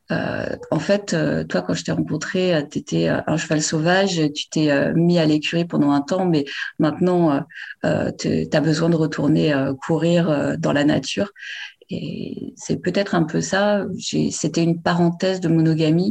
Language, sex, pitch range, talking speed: French, female, 155-190 Hz, 195 wpm